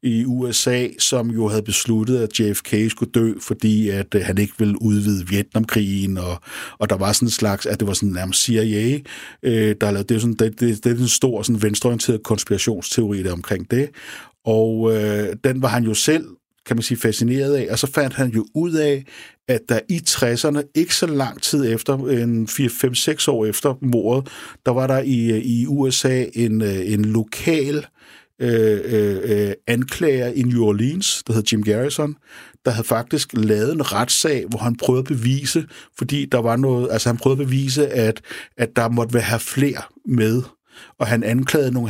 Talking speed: 185 wpm